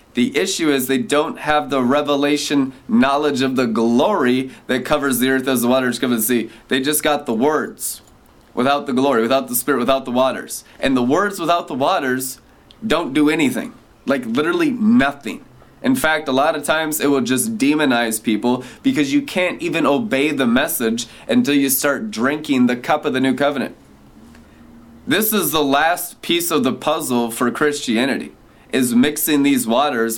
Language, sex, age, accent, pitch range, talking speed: English, male, 20-39, American, 115-150 Hz, 180 wpm